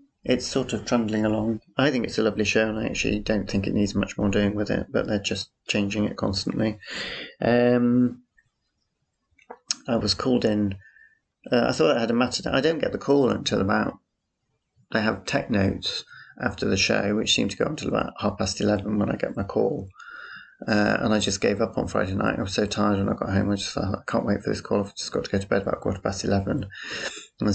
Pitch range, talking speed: 100-110 Hz, 235 wpm